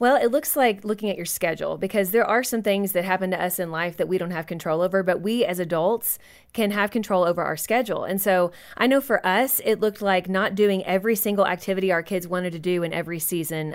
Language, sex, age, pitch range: English, female, 30-49, 180-225 Hz